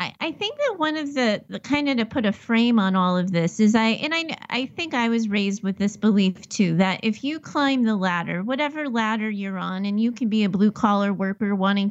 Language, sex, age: English, female, 30-49